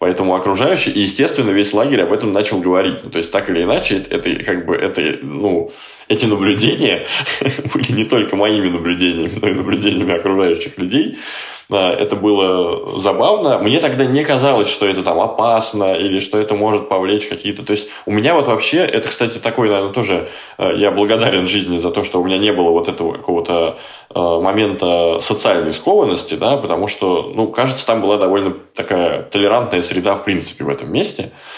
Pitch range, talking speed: 90-120 Hz, 175 wpm